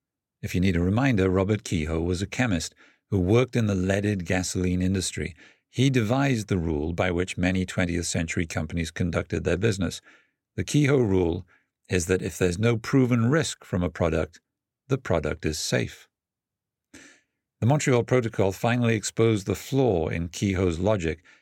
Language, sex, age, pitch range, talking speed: English, male, 50-69, 90-115 Hz, 160 wpm